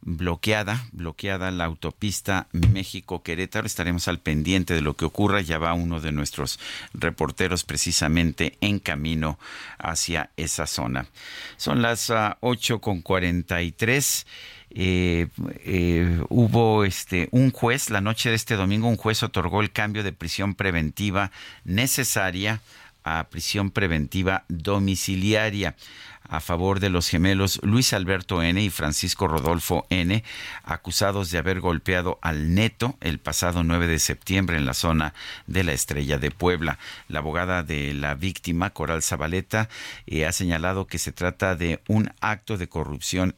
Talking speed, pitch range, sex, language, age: 140 wpm, 80-100 Hz, male, Spanish, 50-69